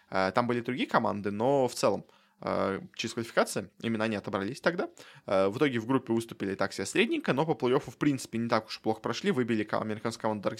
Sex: male